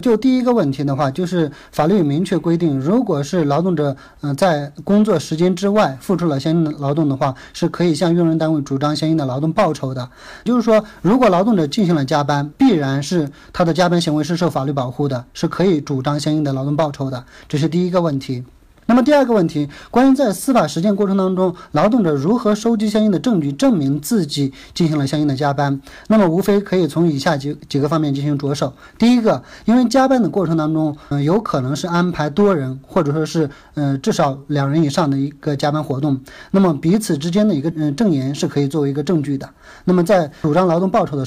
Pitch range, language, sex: 145-190 Hz, Chinese, male